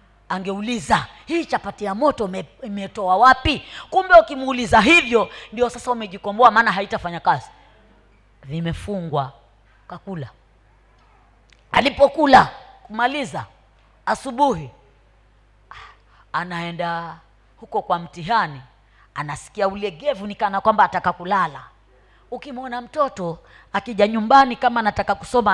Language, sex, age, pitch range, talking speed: Swahili, female, 30-49, 170-235 Hz, 85 wpm